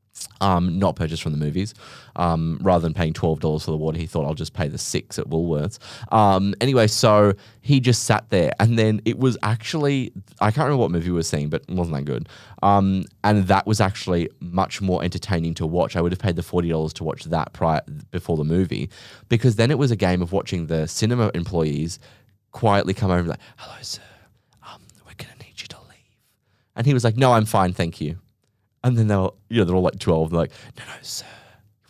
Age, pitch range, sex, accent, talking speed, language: 20-39, 85-115 Hz, male, Australian, 225 wpm, English